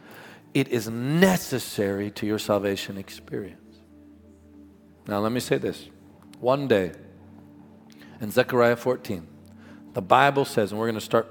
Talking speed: 125 wpm